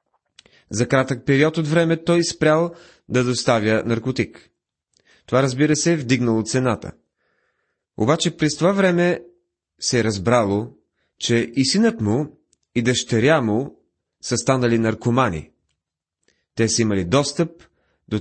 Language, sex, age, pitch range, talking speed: Bulgarian, male, 30-49, 105-145 Hz, 125 wpm